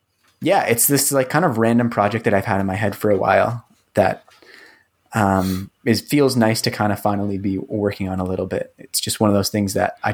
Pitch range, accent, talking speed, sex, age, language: 100-115 Hz, American, 235 wpm, male, 20-39, English